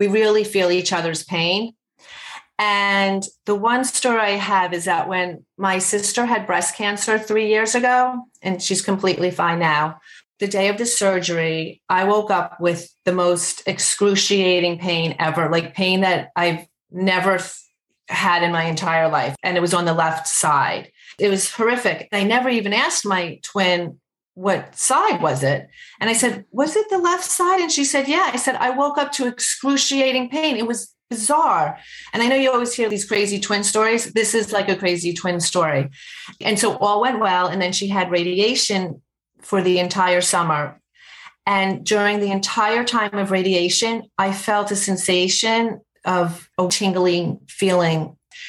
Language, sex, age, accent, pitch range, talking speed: English, female, 30-49, American, 180-225 Hz, 175 wpm